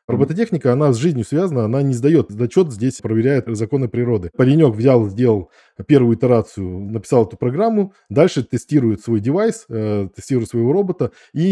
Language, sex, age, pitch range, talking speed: Russian, male, 20-39, 110-140 Hz, 150 wpm